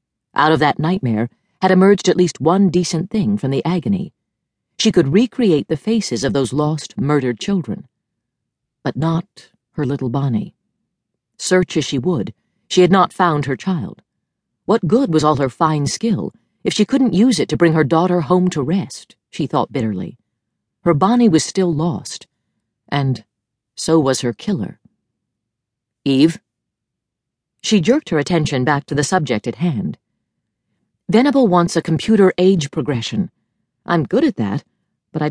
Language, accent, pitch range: English, American, 135-185 Hz